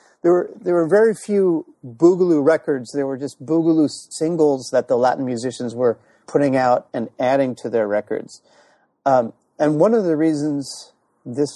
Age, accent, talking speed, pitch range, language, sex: 40-59, American, 165 wpm, 130-170 Hz, English, male